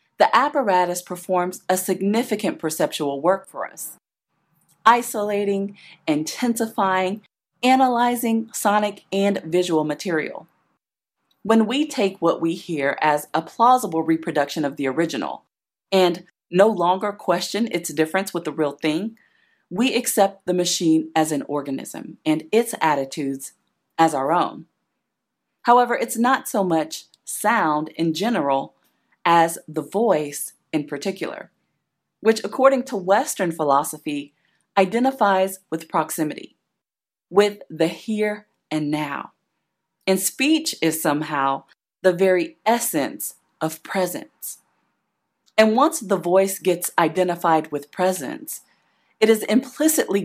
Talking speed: 115 wpm